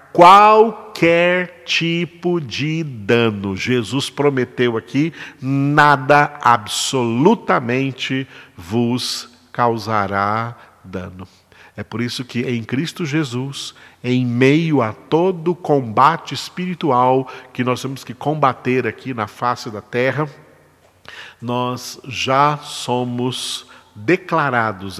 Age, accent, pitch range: 50-69, Brazilian, 115-140 Hz